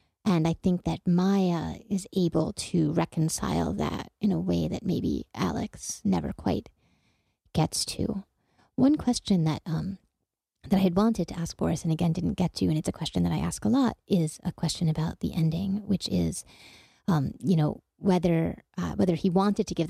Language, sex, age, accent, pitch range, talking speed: English, female, 30-49, American, 160-185 Hz, 190 wpm